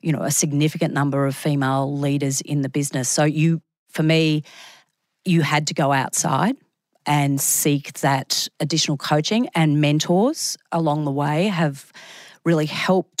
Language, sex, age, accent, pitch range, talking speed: English, female, 40-59, Australian, 145-170 Hz, 150 wpm